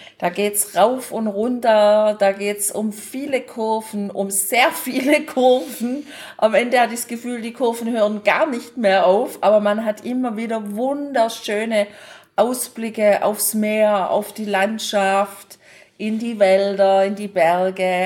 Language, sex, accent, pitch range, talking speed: German, female, German, 195-235 Hz, 155 wpm